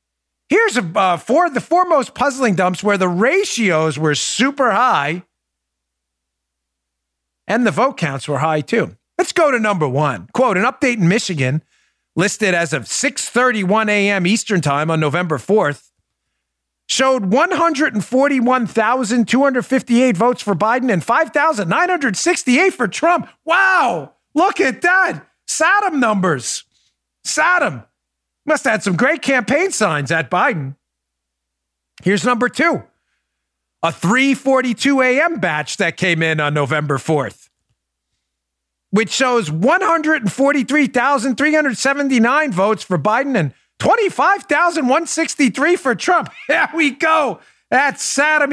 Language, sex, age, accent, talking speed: English, male, 40-59, American, 115 wpm